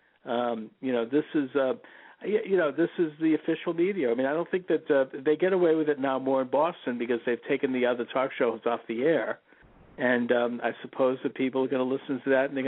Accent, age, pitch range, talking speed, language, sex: American, 50-69, 125-145 Hz, 250 wpm, English, male